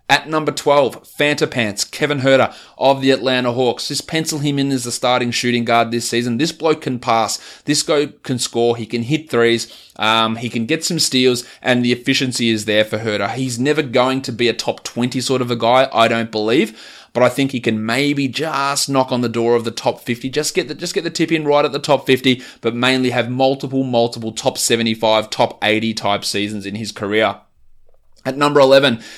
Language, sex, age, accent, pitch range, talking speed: English, male, 20-39, Australian, 115-135 Hz, 220 wpm